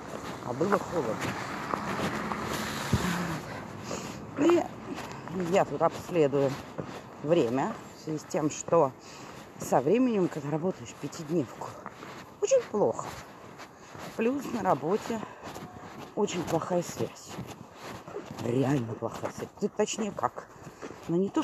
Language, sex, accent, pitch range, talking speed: Russian, female, native, 145-210 Hz, 90 wpm